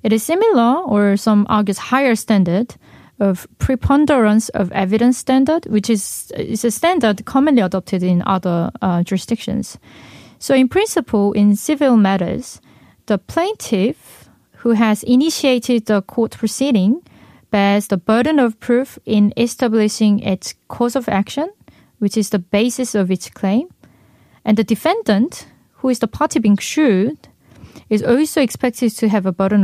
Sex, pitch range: female, 205-255 Hz